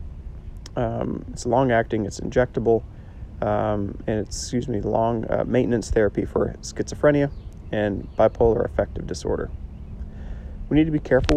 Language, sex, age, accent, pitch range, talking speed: English, male, 30-49, American, 95-115 Hz, 130 wpm